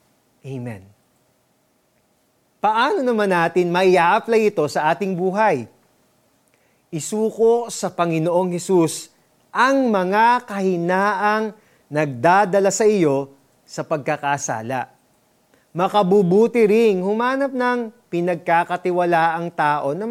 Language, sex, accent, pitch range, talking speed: Filipino, male, native, 145-205 Hz, 85 wpm